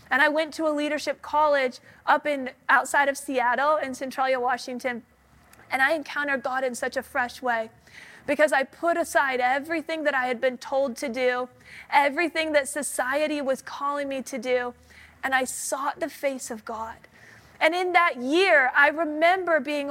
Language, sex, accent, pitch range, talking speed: English, female, American, 265-330 Hz, 175 wpm